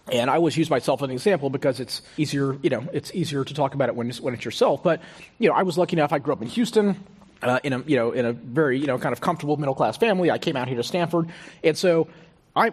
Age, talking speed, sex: 30-49, 290 wpm, male